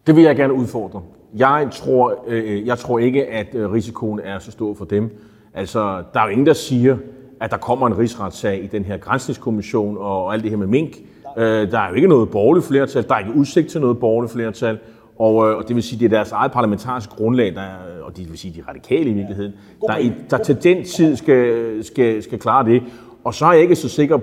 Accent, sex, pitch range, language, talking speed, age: native, male, 105-135 Hz, Danish, 235 wpm, 30-49